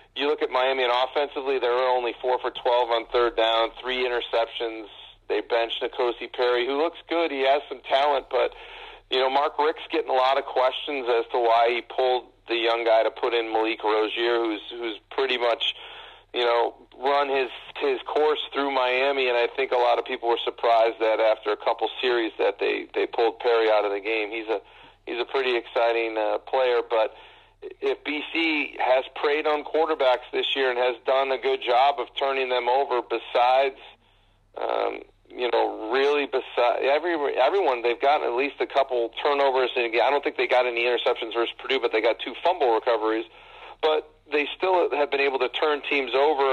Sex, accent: male, American